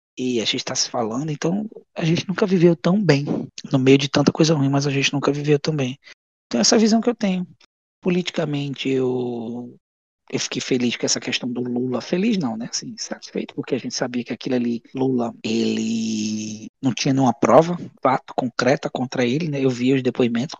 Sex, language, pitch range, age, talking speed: male, Portuguese, 120-145 Hz, 20-39, 205 wpm